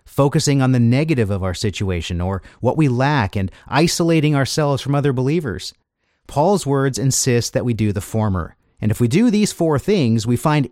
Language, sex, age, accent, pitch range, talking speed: English, male, 40-59, American, 100-145 Hz, 190 wpm